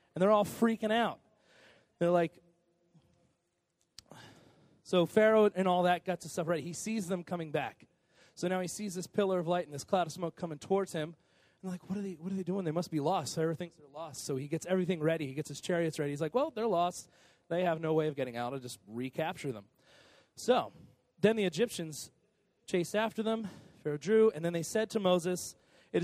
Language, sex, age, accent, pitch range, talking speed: English, male, 30-49, American, 135-185 Hz, 225 wpm